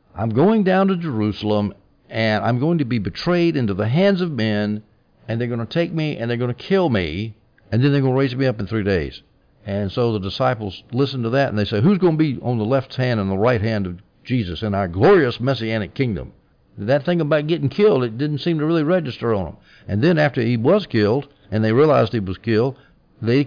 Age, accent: 60-79, American